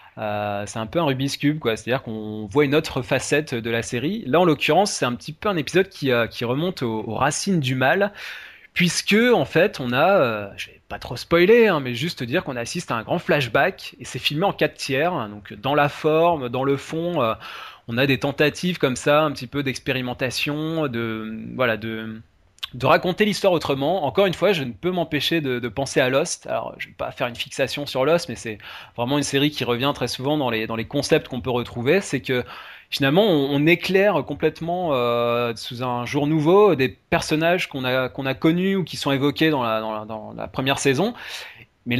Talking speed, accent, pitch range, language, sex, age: 225 wpm, French, 125-160 Hz, French, male, 20-39